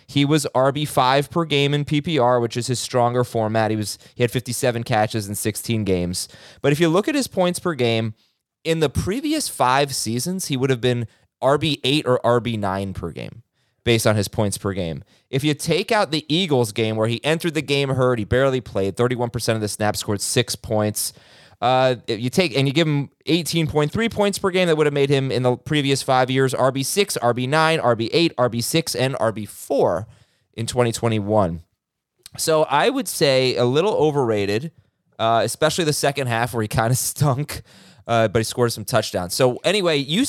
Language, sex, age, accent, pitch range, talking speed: English, male, 20-39, American, 110-145 Hz, 205 wpm